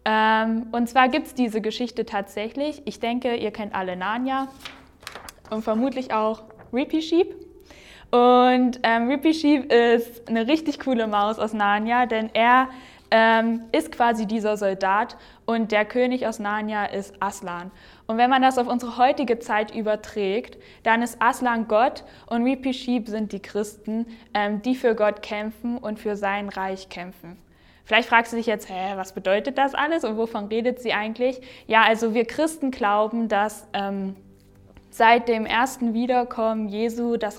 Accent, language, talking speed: German, German, 155 wpm